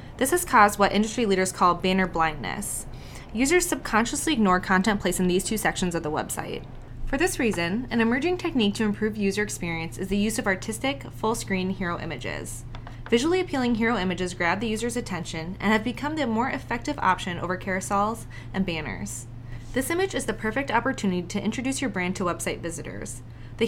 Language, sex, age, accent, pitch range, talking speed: English, female, 20-39, American, 165-225 Hz, 180 wpm